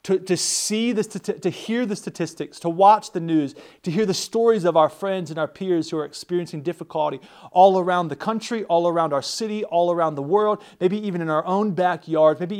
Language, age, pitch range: English, 30-49, 155-190 Hz